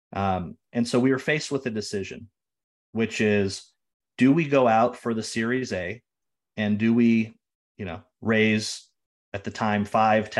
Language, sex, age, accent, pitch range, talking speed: English, male, 30-49, American, 105-120 Hz, 165 wpm